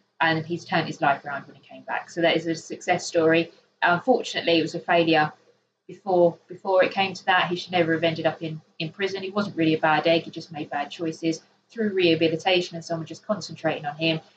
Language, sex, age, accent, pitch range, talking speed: English, female, 20-39, British, 165-195 Hz, 235 wpm